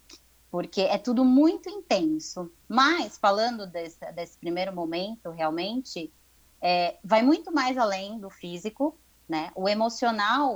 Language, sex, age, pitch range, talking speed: Portuguese, female, 20-39, 170-255 Hz, 125 wpm